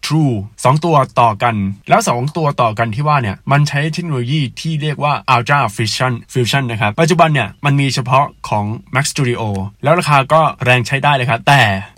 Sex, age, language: male, 20-39, Thai